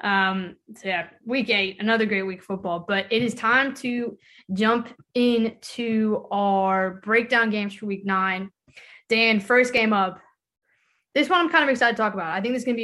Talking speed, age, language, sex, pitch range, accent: 195 wpm, 20-39, English, female, 195-235 Hz, American